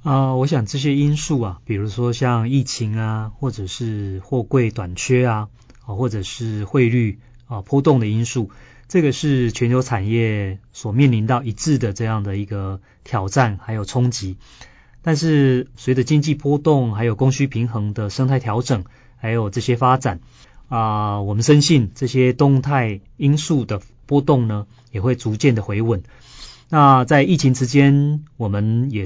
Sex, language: male, Chinese